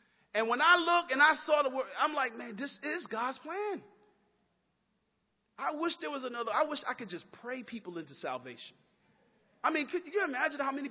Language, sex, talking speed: English, male, 205 wpm